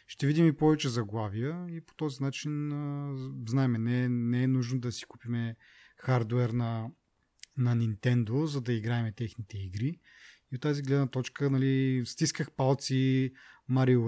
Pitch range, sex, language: 120-140 Hz, male, Bulgarian